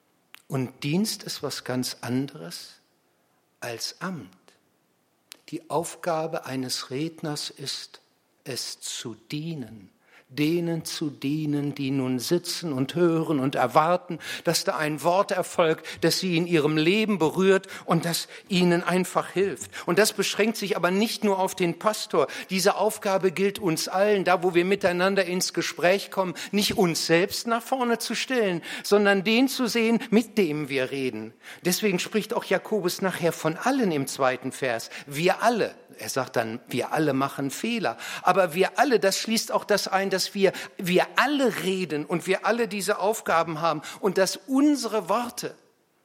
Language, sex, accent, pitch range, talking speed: German, male, German, 150-200 Hz, 160 wpm